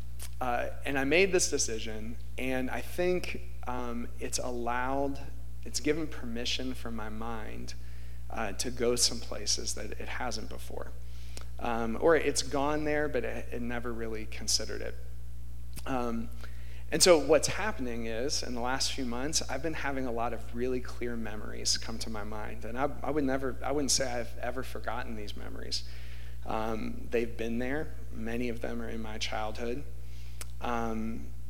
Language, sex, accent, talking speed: English, male, American, 170 wpm